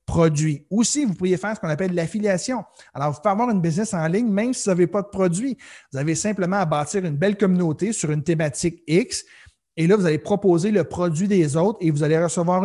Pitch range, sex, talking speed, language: 155-190 Hz, male, 235 wpm, French